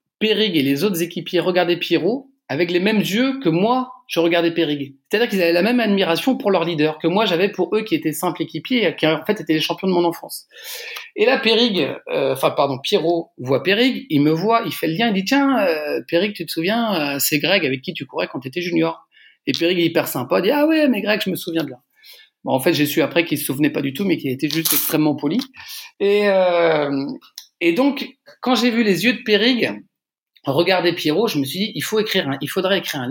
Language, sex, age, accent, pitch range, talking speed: French, male, 40-59, French, 160-225 Hz, 245 wpm